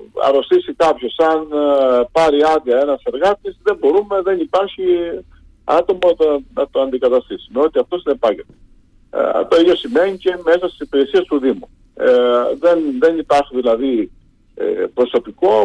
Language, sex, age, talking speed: Greek, male, 50-69, 125 wpm